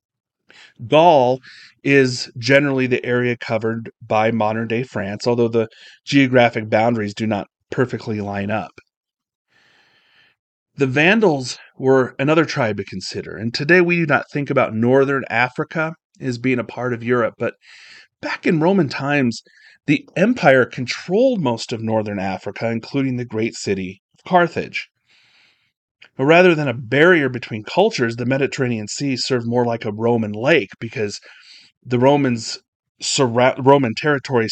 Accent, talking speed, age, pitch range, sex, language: American, 135 wpm, 30-49, 115-145 Hz, male, English